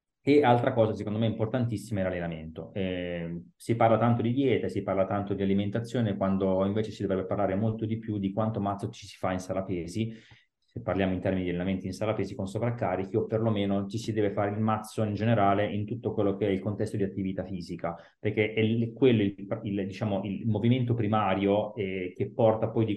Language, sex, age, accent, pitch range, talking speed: Italian, male, 30-49, native, 95-110 Hz, 205 wpm